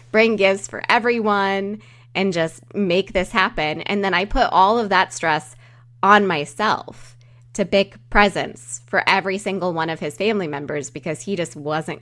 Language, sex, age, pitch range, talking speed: English, female, 20-39, 155-210 Hz, 170 wpm